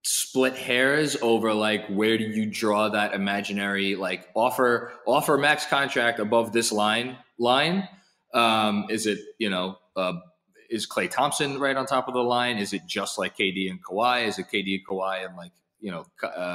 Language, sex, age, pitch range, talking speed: English, male, 20-39, 100-130 Hz, 180 wpm